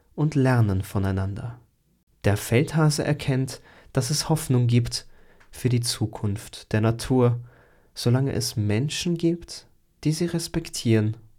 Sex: male